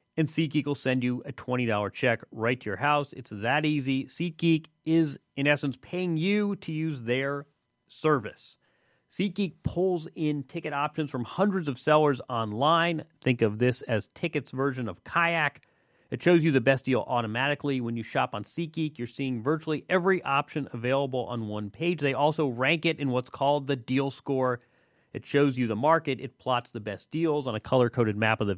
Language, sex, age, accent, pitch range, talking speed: English, male, 30-49, American, 125-155 Hz, 190 wpm